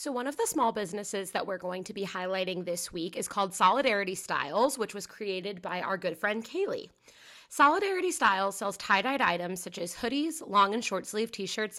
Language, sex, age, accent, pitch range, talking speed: English, female, 20-39, American, 175-220 Hz, 210 wpm